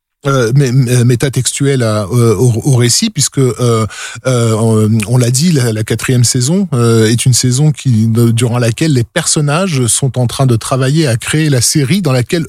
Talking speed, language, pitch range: 180 wpm, French, 120-150 Hz